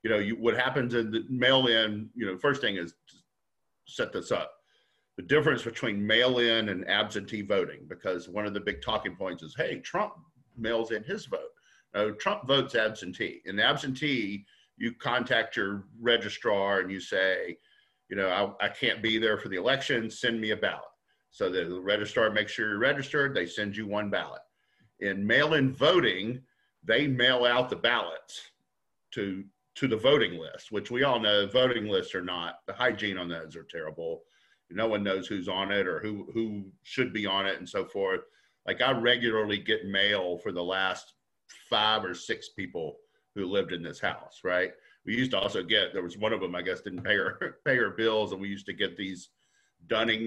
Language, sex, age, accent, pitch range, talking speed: English, male, 50-69, American, 105-135 Hz, 195 wpm